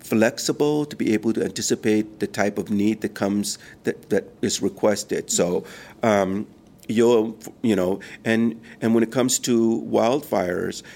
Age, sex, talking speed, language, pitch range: 50-69, male, 155 wpm, English, 100-115 Hz